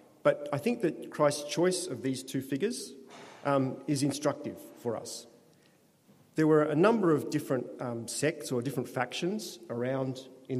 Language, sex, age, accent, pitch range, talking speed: English, male, 40-59, Australian, 120-145 Hz, 160 wpm